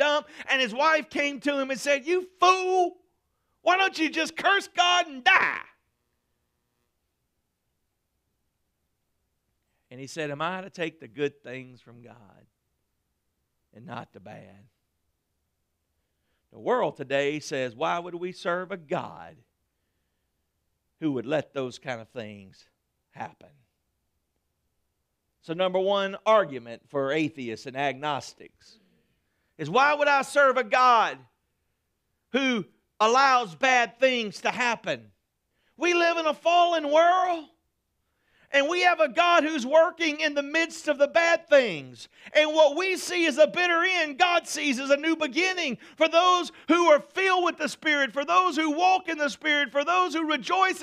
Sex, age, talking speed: male, 50-69, 150 wpm